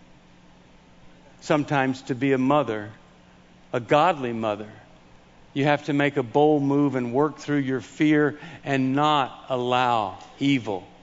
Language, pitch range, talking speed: English, 110-165 Hz, 130 wpm